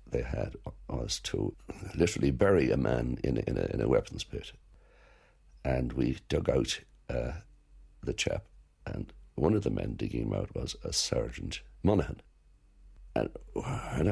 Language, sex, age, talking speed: English, male, 60-79, 155 wpm